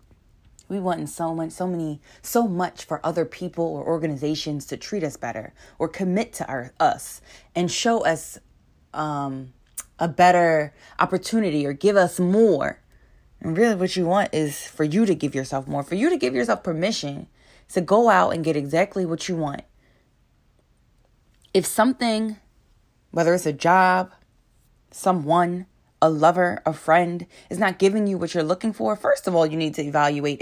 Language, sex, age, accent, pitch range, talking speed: English, female, 20-39, American, 155-195 Hz, 170 wpm